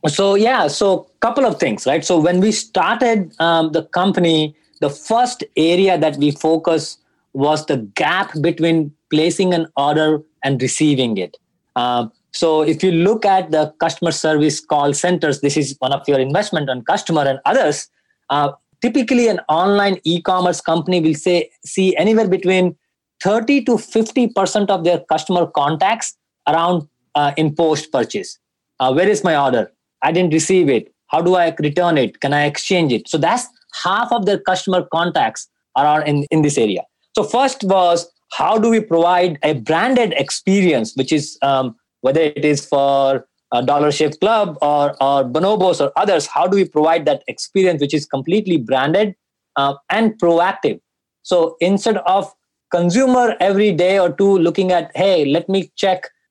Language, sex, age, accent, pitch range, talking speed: English, male, 20-39, Indian, 150-195 Hz, 165 wpm